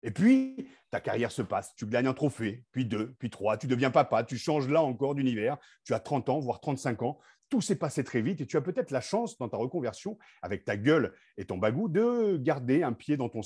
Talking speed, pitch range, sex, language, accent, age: 245 wpm, 120-185 Hz, male, French, French, 40-59